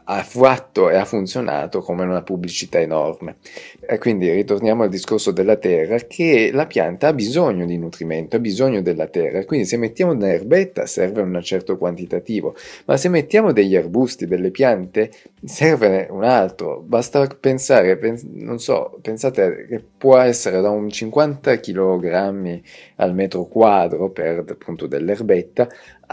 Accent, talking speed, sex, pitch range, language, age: native, 145 wpm, male, 95-130 Hz, Italian, 30-49